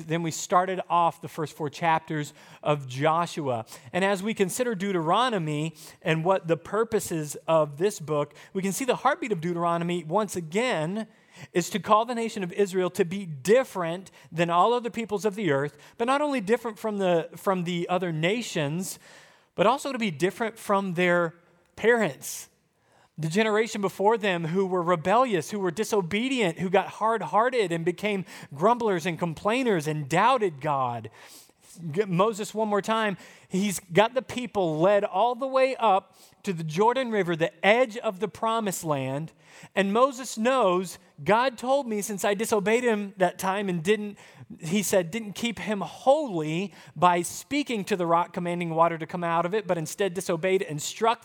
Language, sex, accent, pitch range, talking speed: English, male, American, 170-220 Hz, 170 wpm